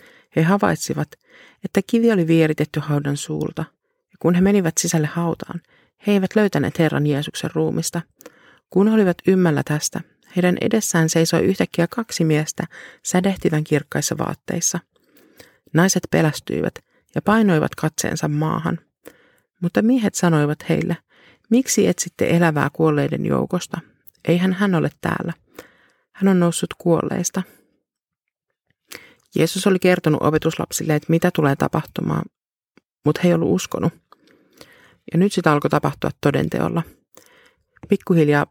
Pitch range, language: 155-190 Hz, Finnish